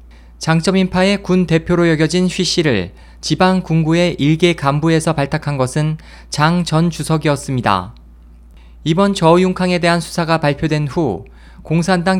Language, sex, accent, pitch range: Korean, male, native, 130-175 Hz